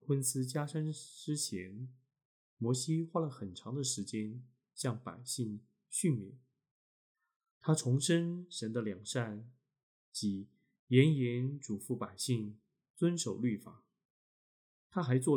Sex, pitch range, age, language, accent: male, 110-145 Hz, 20-39, Chinese, native